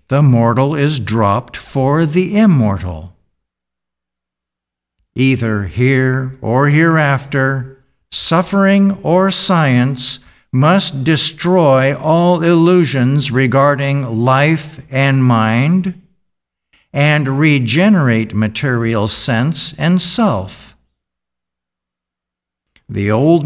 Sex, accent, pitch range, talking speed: male, American, 100-165 Hz, 75 wpm